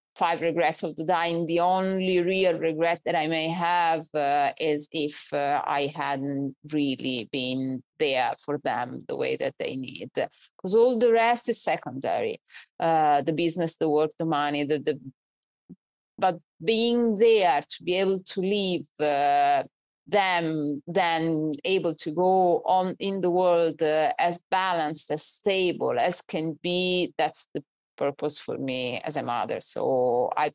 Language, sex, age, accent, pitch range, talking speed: English, female, 30-49, Italian, 145-180 Hz, 155 wpm